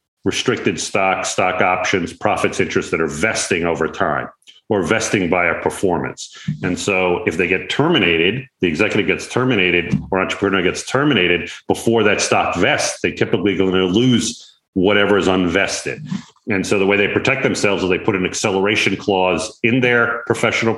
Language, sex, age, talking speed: English, male, 40-59, 170 wpm